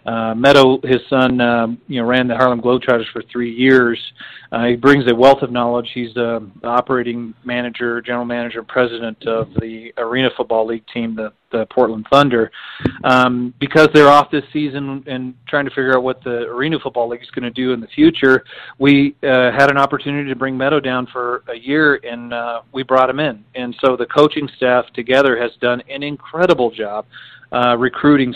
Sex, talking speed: male, 195 wpm